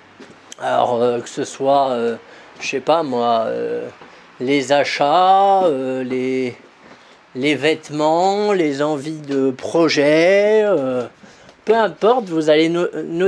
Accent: French